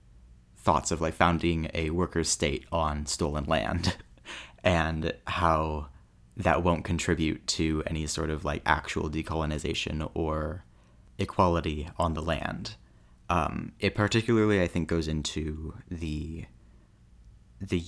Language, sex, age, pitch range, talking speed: English, male, 30-49, 80-90 Hz, 120 wpm